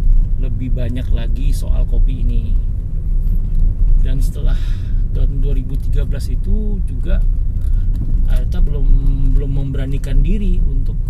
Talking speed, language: 95 wpm, Indonesian